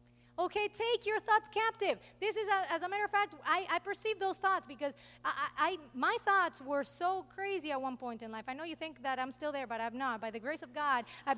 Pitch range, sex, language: 235-370 Hz, female, English